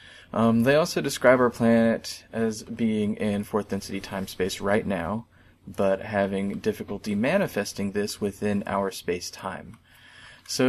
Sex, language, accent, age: male, English, American, 20-39